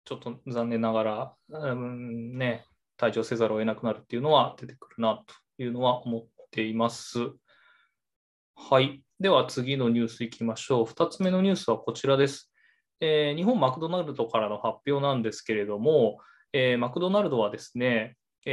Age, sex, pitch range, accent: 20-39, male, 115-150 Hz, native